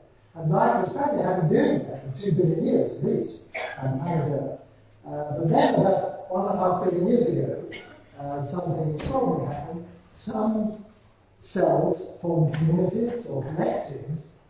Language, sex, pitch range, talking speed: English, male, 135-180 Hz, 145 wpm